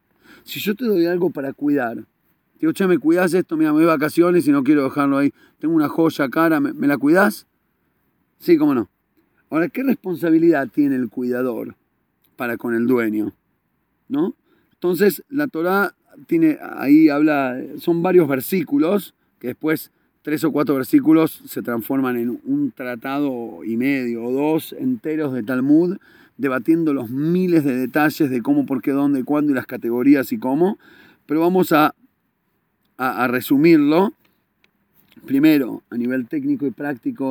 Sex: male